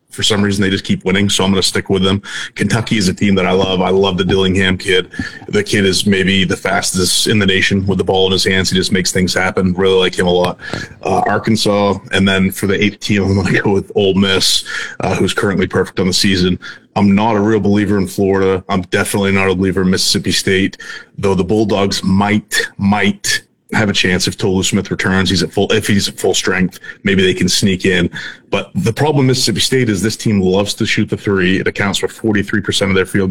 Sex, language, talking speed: male, English, 240 wpm